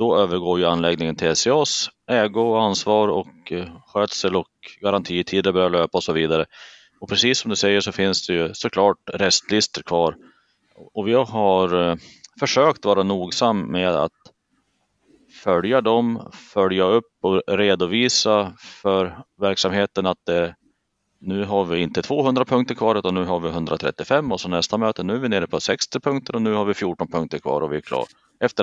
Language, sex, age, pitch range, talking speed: Swedish, male, 30-49, 90-105 Hz, 175 wpm